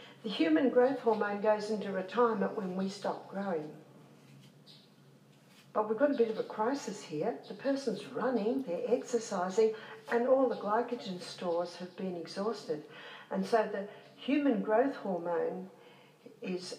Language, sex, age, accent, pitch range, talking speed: English, female, 60-79, Australian, 195-245 Hz, 145 wpm